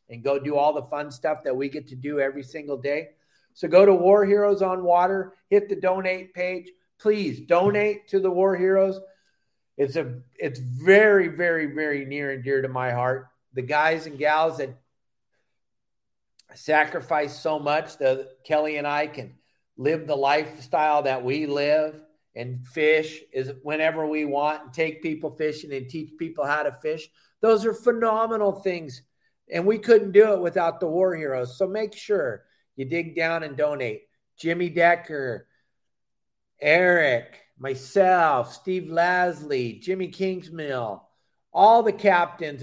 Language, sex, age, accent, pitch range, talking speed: English, male, 50-69, American, 145-185 Hz, 155 wpm